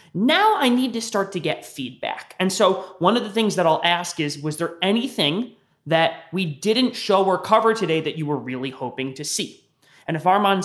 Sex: male